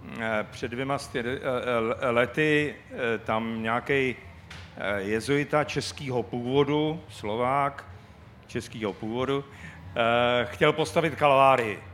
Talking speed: 70 wpm